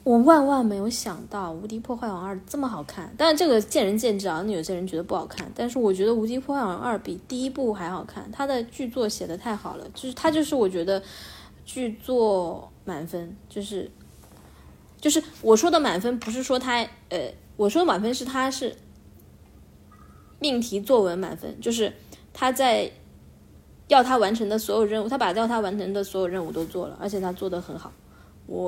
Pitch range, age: 190-270 Hz, 20-39